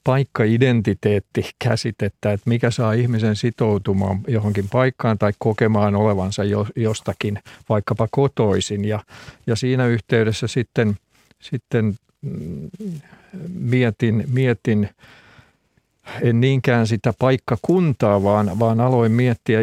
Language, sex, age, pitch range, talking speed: Finnish, male, 50-69, 105-125 Hz, 95 wpm